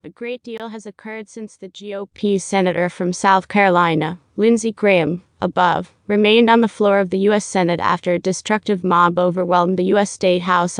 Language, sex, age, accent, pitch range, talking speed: English, female, 30-49, American, 180-210 Hz, 180 wpm